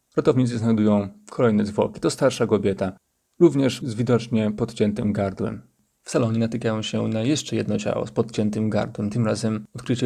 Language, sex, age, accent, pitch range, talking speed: Polish, male, 30-49, native, 105-135 Hz, 155 wpm